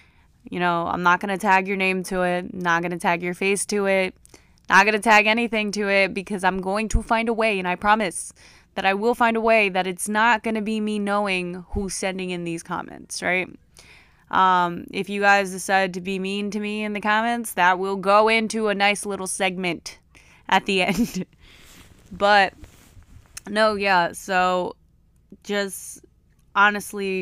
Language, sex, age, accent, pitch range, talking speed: English, female, 20-39, American, 175-200 Hz, 190 wpm